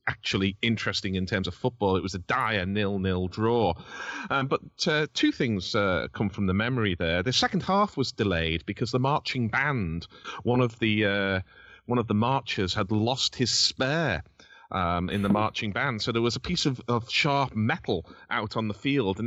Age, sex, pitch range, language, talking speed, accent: 30-49, male, 95-120 Hz, English, 200 wpm, British